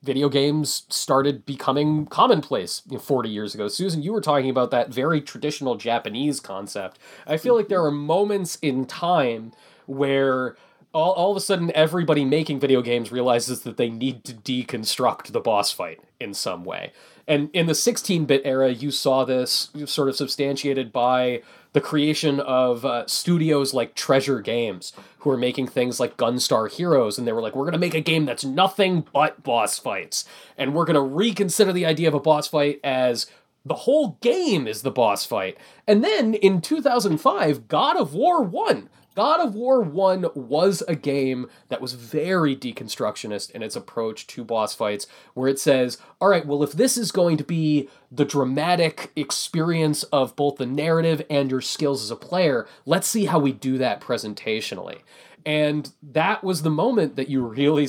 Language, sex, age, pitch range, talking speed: English, male, 20-39, 130-160 Hz, 180 wpm